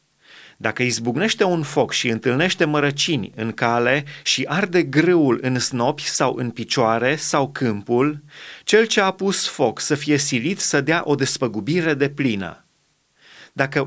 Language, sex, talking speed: Romanian, male, 145 wpm